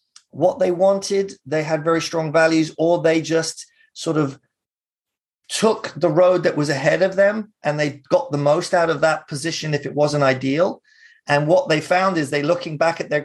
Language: English